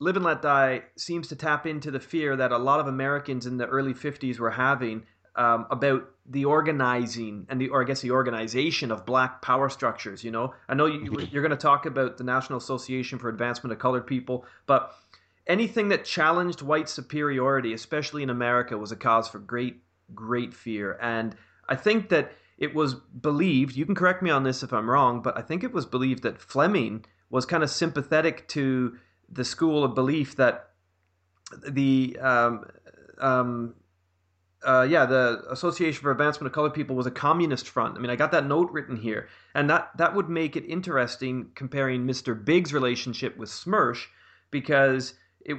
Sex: male